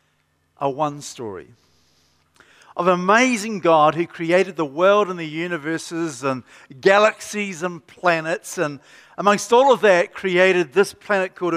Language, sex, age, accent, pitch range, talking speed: English, male, 50-69, Australian, 140-185 Hz, 140 wpm